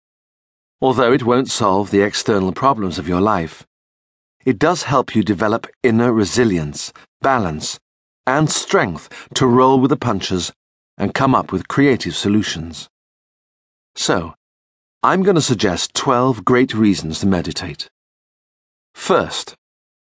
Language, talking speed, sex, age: English, 125 wpm, male, 40-59